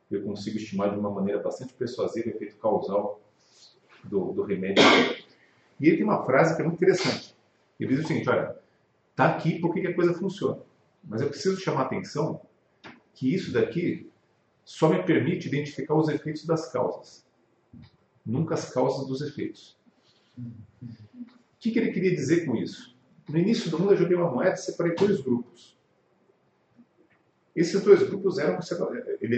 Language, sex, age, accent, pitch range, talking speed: Portuguese, male, 40-59, Brazilian, 135-185 Hz, 165 wpm